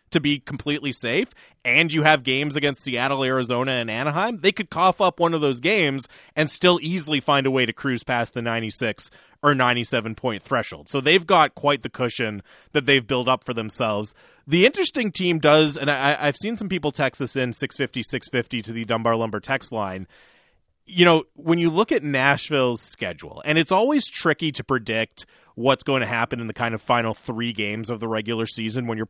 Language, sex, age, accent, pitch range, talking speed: English, male, 30-49, American, 120-155 Hz, 200 wpm